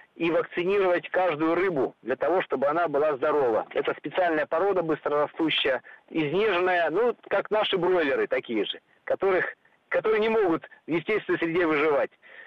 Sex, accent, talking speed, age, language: male, native, 140 wpm, 40-59, Russian